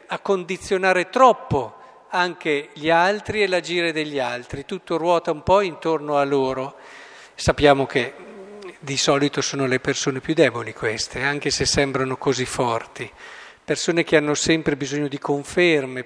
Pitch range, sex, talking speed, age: 135-175 Hz, male, 145 wpm, 50-69